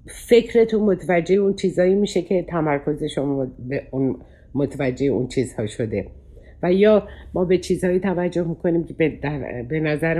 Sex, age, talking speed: female, 60-79, 155 wpm